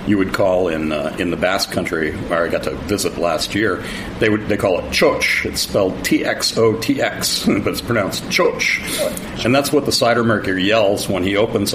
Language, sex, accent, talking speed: English, male, American, 220 wpm